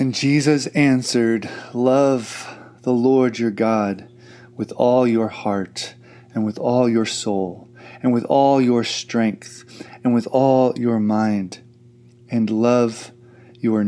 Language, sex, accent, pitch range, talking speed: English, male, American, 115-135 Hz, 130 wpm